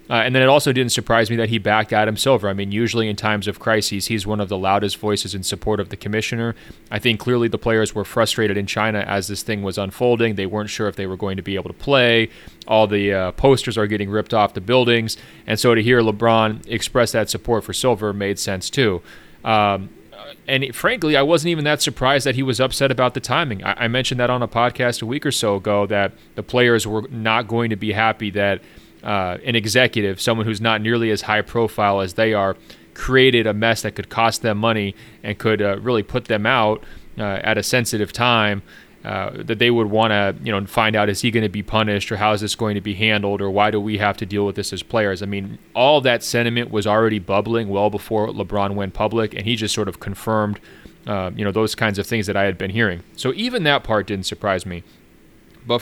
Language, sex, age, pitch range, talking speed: English, male, 30-49, 100-120 Hz, 240 wpm